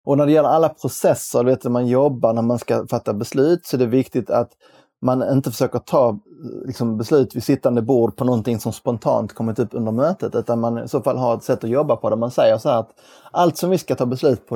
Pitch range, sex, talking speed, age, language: 115-135 Hz, male, 250 wpm, 20-39, Swedish